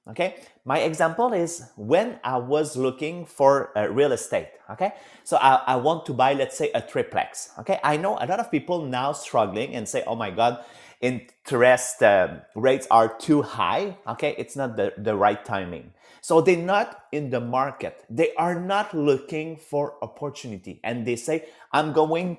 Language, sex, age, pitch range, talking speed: English, male, 30-49, 120-170 Hz, 180 wpm